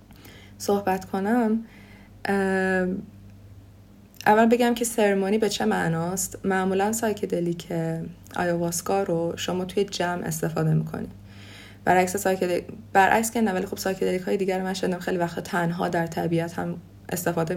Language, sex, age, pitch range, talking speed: Persian, female, 30-49, 165-195 Hz, 125 wpm